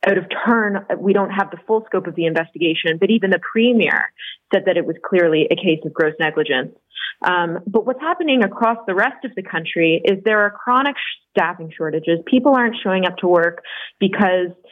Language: English